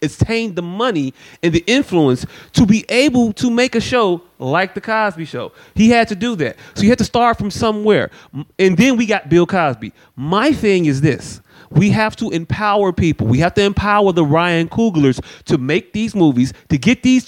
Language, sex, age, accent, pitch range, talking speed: English, male, 30-49, American, 150-215 Hz, 200 wpm